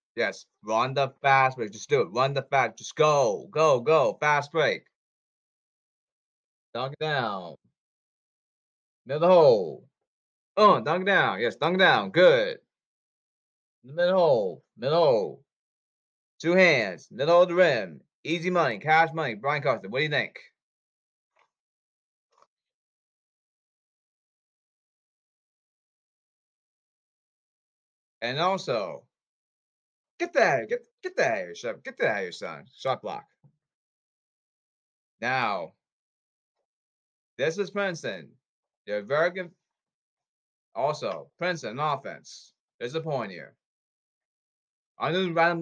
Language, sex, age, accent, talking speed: English, male, 30-49, American, 110 wpm